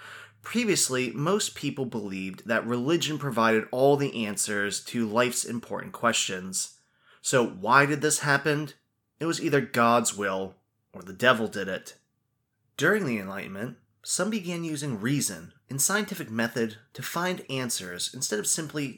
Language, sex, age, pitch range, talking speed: English, male, 20-39, 115-150 Hz, 140 wpm